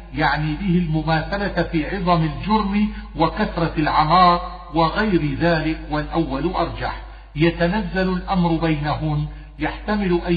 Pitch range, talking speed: 160-190 Hz, 100 wpm